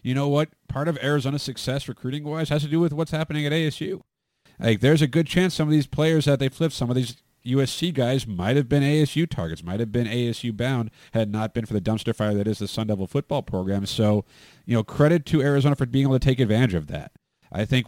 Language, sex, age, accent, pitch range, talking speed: English, male, 40-59, American, 105-140 Hz, 240 wpm